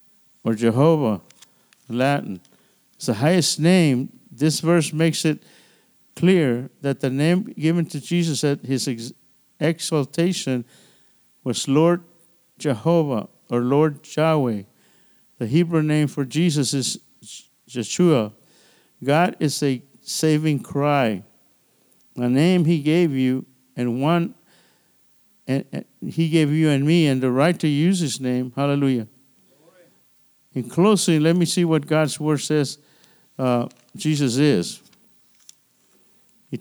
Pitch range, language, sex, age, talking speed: 135-170 Hz, English, male, 50-69, 125 wpm